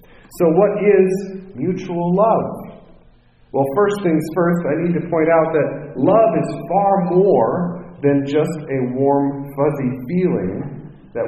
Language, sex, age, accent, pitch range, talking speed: English, male, 40-59, American, 135-180 Hz, 140 wpm